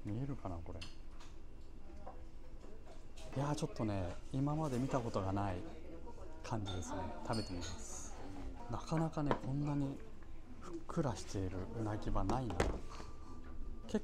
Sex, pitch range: male, 95-130 Hz